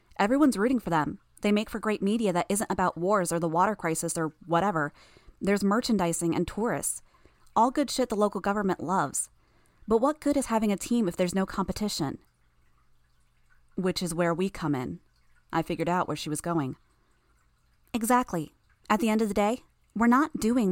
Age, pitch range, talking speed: 20-39, 180-225 Hz, 185 wpm